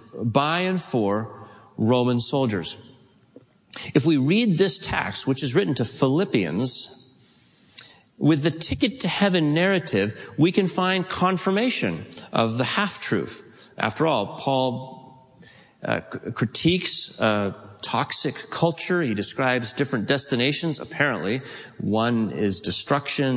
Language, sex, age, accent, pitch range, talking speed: English, male, 40-59, American, 115-170 Hz, 110 wpm